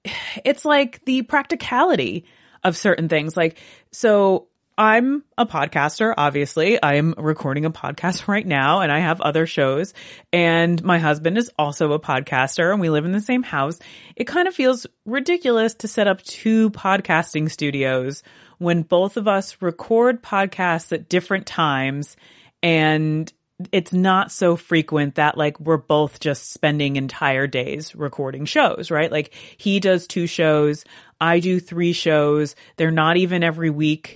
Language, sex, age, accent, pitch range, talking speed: English, female, 30-49, American, 150-190 Hz, 155 wpm